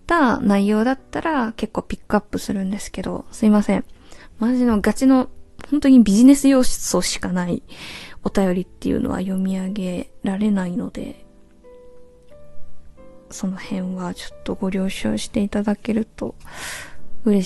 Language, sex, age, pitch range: Japanese, female, 20-39, 190-230 Hz